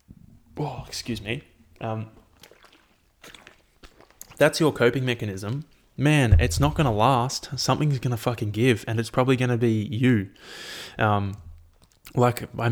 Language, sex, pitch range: English, male, 105-125 Hz